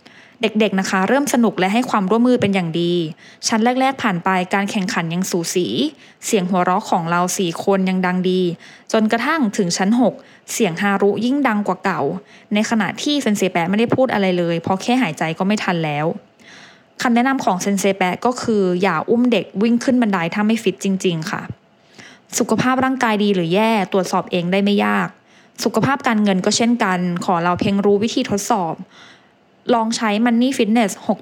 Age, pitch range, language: 20-39, 190-240 Hz, English